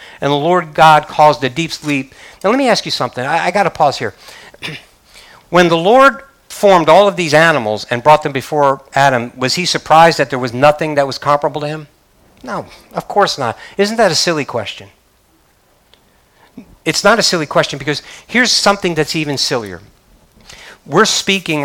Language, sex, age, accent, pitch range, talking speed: English, male, 50-69, American, 135-175 Hz, 185 wpm